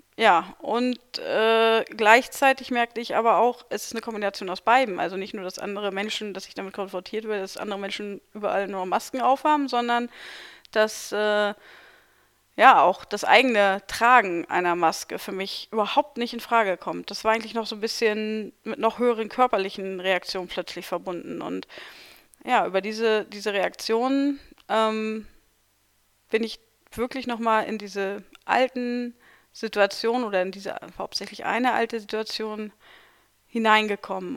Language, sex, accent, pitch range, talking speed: German, female, German, 200-235 Hz, 150 wpm